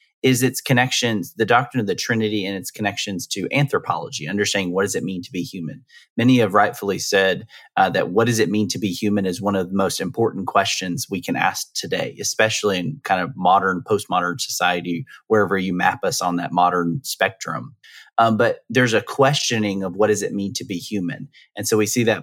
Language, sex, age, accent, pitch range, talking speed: English, male, 30-49, American, 95-125 Hz, 210 wpm